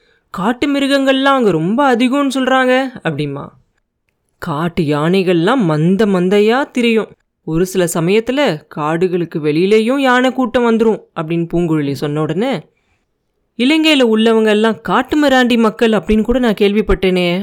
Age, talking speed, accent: 30-49, 105 wpm, native